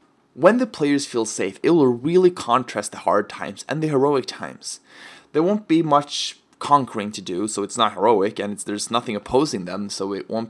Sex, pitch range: male, 115-160 Hz